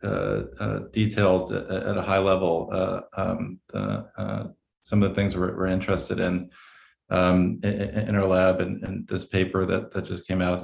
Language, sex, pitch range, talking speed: English, male, 90-100 Hz, 185 wpm